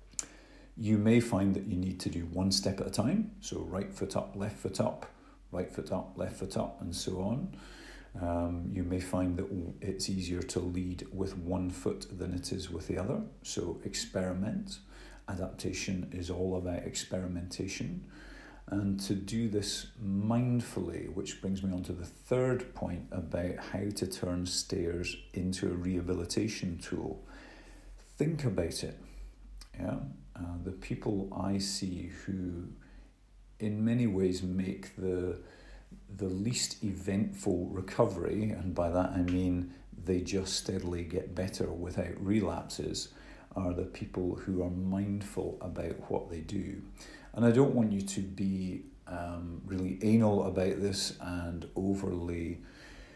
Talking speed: 150 wpm